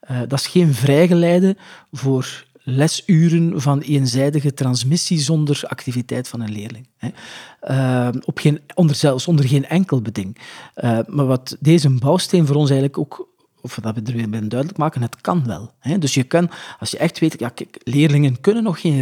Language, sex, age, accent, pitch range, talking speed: Dutch, male, 40-59, Dutch, 130-165 Hz, 185 wpm